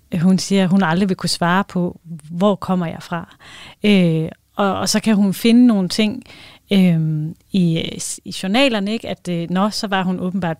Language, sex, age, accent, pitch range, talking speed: Danish, female, 30-49, native, 175-210 Hz, 190 wpm